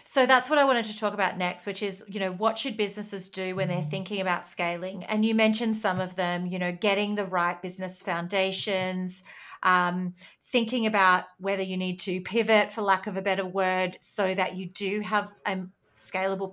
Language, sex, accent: English, female, Australian